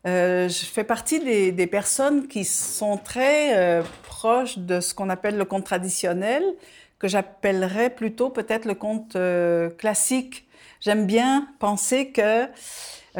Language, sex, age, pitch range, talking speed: French, female, 50-69, 185-235 Hz, 145 wpm